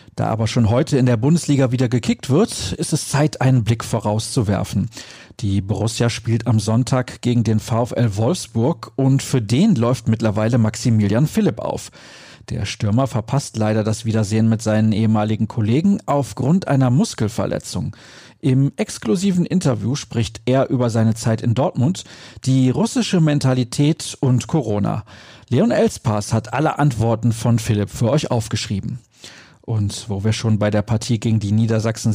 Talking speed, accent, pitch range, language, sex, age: 150 wpm, German, 110-145 Hz, German, male, 40-59